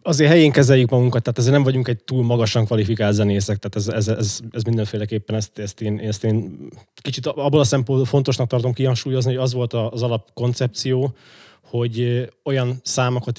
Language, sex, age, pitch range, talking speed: Hungarian, male, 20-39, 110-125 Hz, 175 wpm